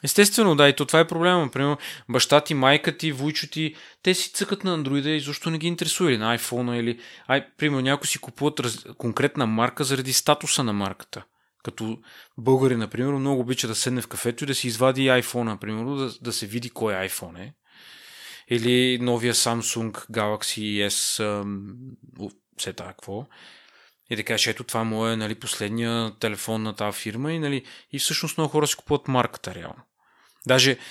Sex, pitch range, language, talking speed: male, 115-145 Hz, Bulgarian, 185 wpm